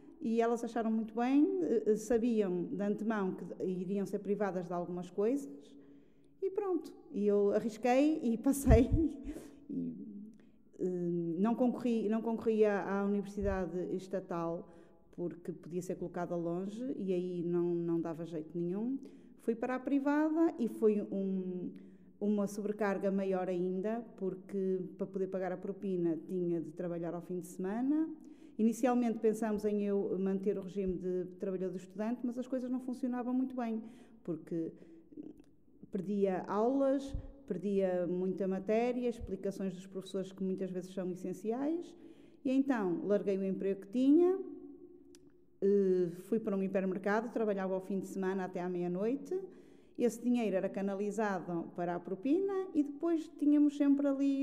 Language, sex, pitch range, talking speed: Portuguese, female, 185-250 Hz, 140 wpm